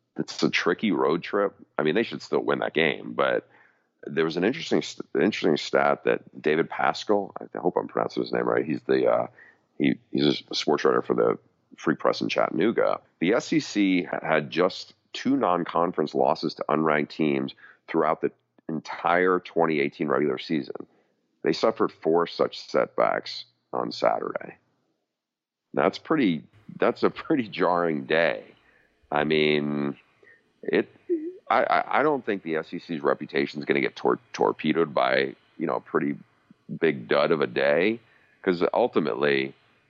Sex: male